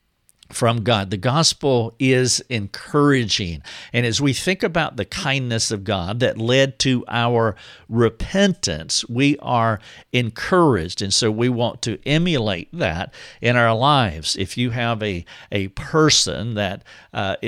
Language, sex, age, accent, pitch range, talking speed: English, male, 50-69, American, 105-135 Hz, 140 wpm